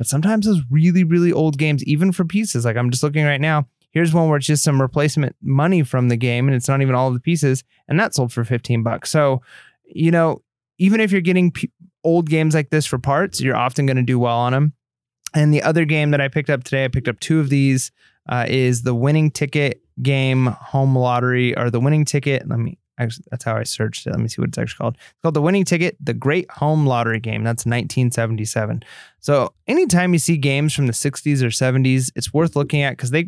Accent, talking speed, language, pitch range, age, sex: American, 235 wpm, English, 125-155 Hz, 20-39, male